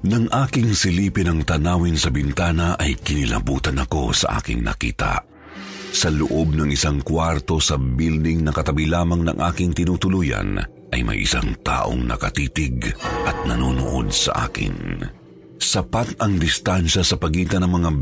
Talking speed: 140 wpm